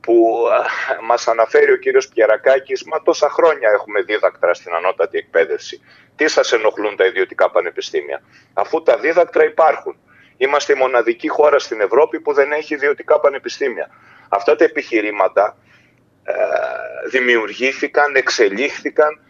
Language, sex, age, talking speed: Greek, male, 30-49, 125 wpm